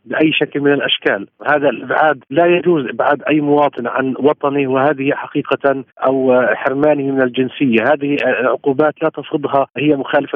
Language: Arabic